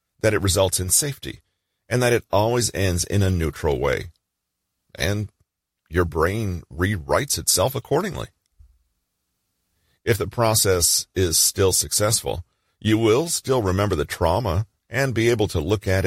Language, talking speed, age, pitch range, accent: English, 140 wpm, 40-59, 85-110 Hz, American